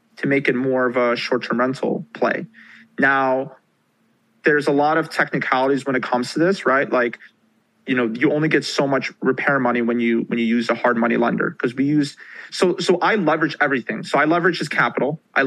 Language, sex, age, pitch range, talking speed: English, male, 30-49, 125-145 Hz, 215 wpm